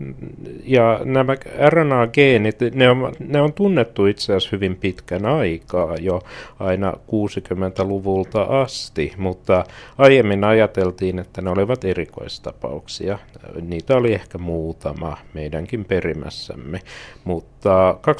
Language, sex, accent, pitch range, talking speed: Finnish, male, native, 85-115 Hz, 100 wpm